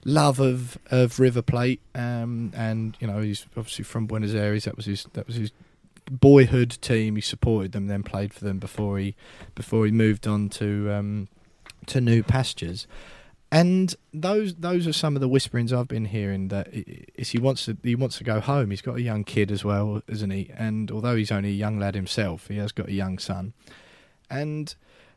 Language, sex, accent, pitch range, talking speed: English, male, British, 100-130 Hz, 205 wpm